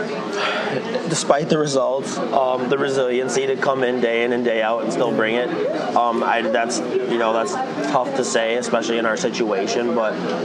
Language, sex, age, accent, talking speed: English, male, 20-39, American, 185 wpm